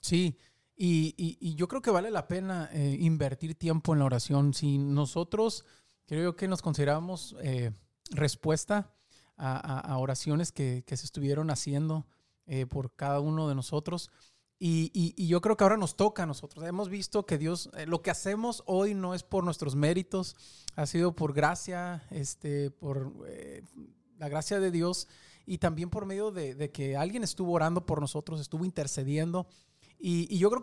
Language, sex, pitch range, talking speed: English, male, 145-185 Hz, 185 wpm